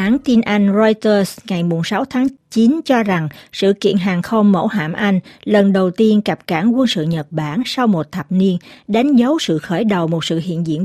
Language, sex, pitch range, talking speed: Vietnamese, female, 170-235 Hz, 215 wpm